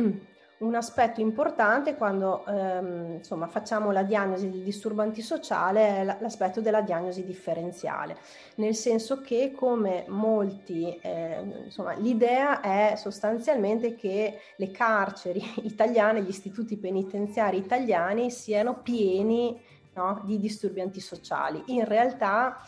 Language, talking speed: Italian, 105 wpm